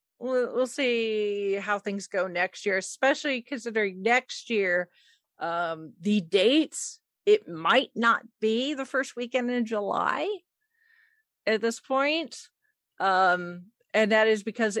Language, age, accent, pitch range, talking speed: English, 40-59, American, 175-235 Hz, 125 wpm